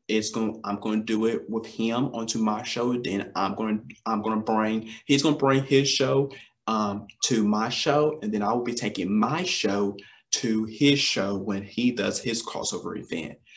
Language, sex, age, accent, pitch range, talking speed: English, male, 30-49, American, 105-140 Hz, 210 wpm